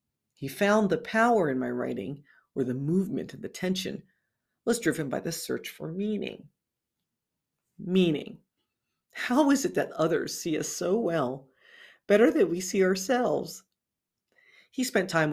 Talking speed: 150 wpm